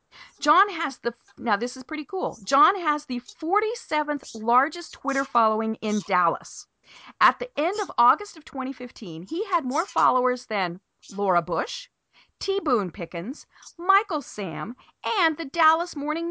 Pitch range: 205-300 Hz